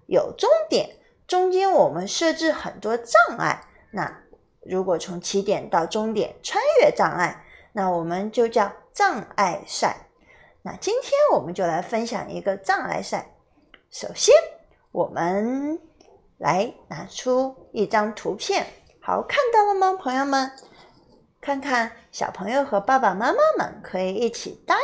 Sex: female